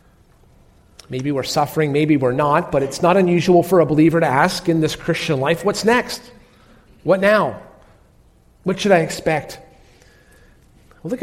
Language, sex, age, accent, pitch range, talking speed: English, male, 40-59, American, 145-190 Hz, 150 wpm